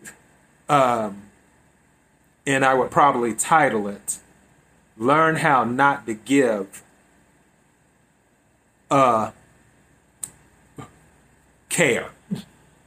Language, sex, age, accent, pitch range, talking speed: English, male, 30-49, American, 125-165 Hz, 60 wpm